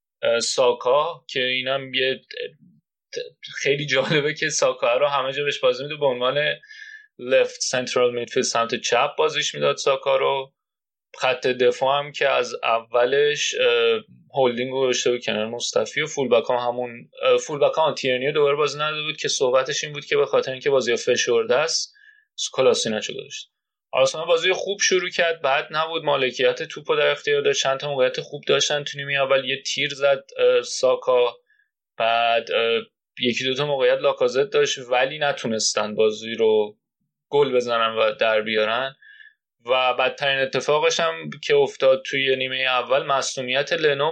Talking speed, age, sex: 145 wpm, 30-49, male